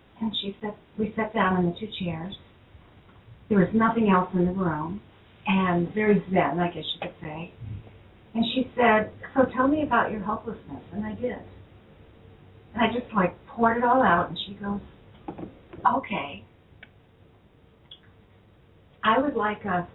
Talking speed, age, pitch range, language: 160 wpm, 50-69, 160-215 Hz, English